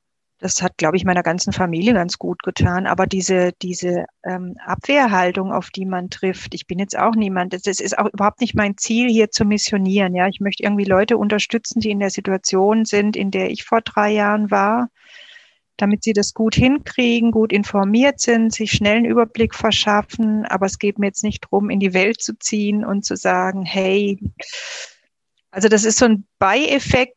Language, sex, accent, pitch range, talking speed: German, female, German, 195-225 Hz, 190 wpm